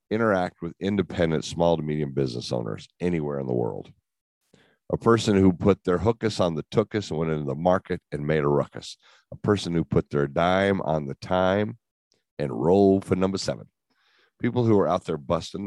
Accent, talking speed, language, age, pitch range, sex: American, 190 wpm, English, 50-69, 80-105 Hz, male